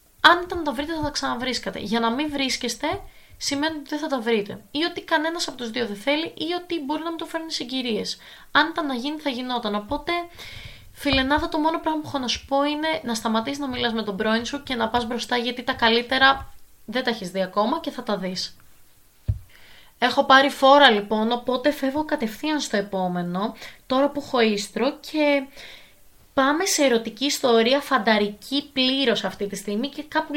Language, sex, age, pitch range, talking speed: Greek, female, 20-39, 220-295 Hz, 200 wpm